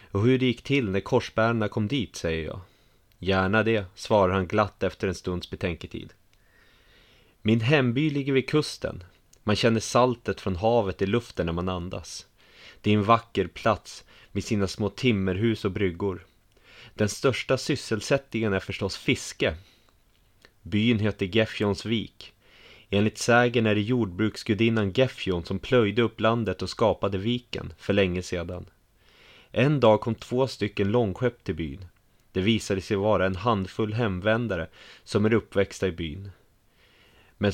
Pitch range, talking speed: 95-115 Hz, 145 wpm